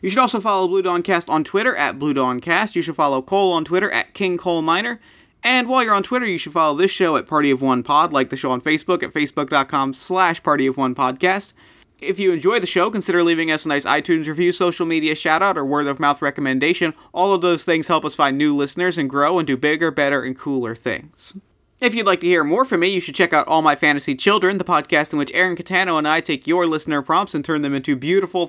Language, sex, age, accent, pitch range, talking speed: English, male, 30-49, American, 140-180 Hz, 235 wpm